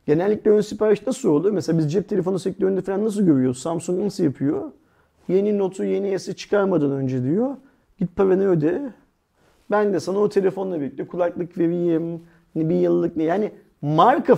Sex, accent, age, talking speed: male, native, 40-59, 165 wpm